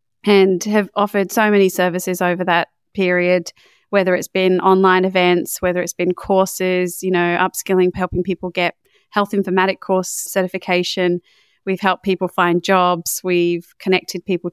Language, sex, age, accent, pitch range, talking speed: English, female, 30-49, Australian, 175-195 Hz, 150 wpm